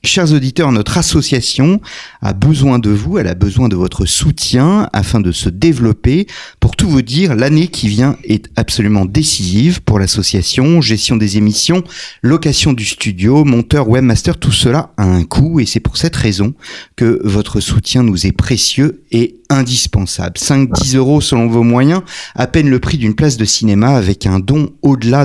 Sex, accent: male, French